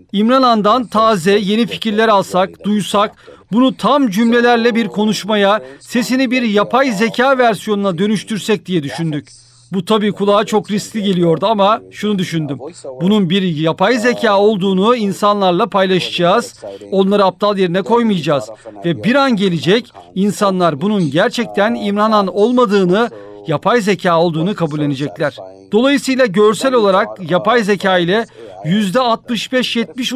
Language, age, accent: Turkish, 40-59, native